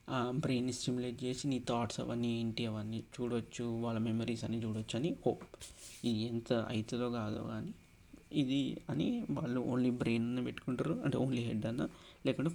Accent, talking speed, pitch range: native, 155 wpm, 115-130 Hz